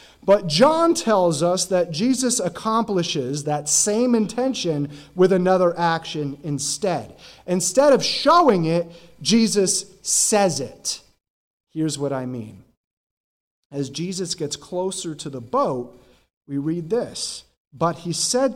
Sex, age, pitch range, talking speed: male, 30-49, 140-200 Hz, 125 wpm